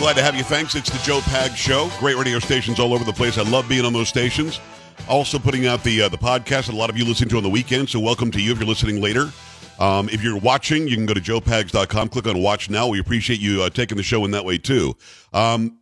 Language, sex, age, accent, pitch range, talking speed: English, male, 50-69, American, 105-135 Hz, 275 wpm